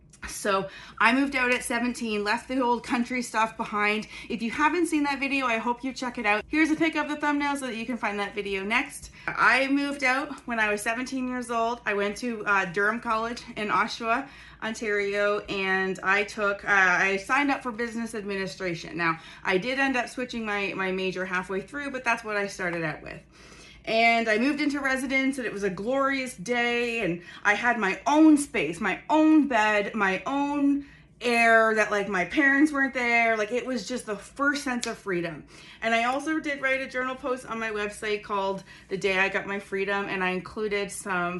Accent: American